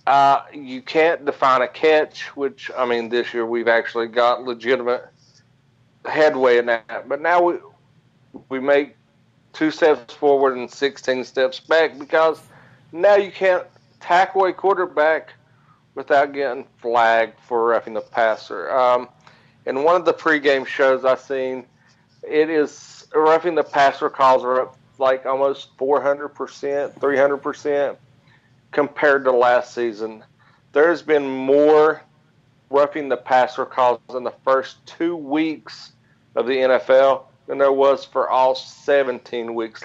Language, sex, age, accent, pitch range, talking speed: English, male, 40-59, American, 125-145 Hz, 140 wpm